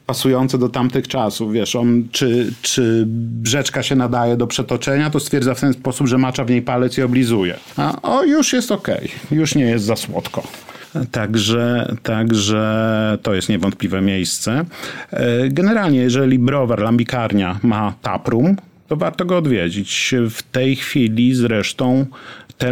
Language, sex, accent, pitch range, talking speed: Polish, male, native, 110-130 Hz, 150 wpm